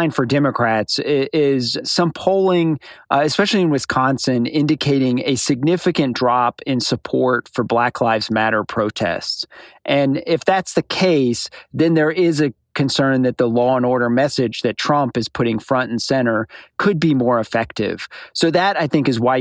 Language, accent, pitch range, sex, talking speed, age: English, American, 120-145 Hz, male, 160 wpm, 40-59